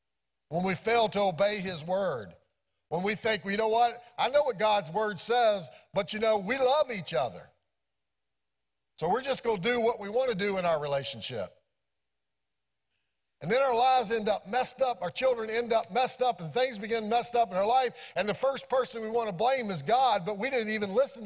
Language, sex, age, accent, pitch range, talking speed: English, male, 50-69, American, 140-230 Hz, 220 wpm